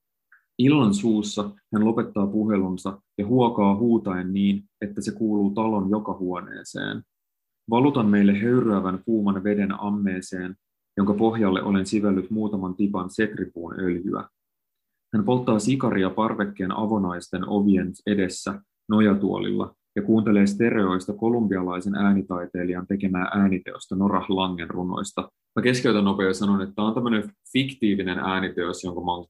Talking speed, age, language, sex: 115 wpm, 20-39, Finnish, male